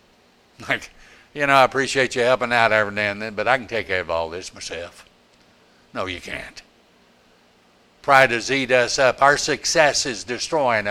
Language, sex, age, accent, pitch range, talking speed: English, male, 60-79, American, 115-150 Hz, 180 wpm